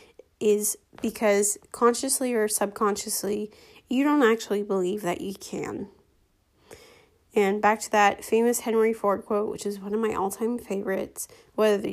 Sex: female